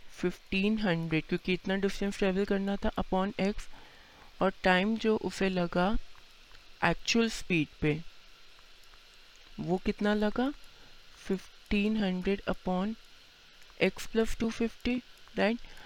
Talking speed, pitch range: 100 wpm, 175-205 Hz